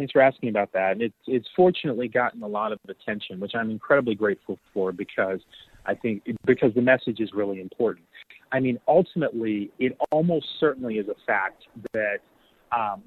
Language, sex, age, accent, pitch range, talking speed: English, male, 30-49, American, 105-130 Hz, 175 wpm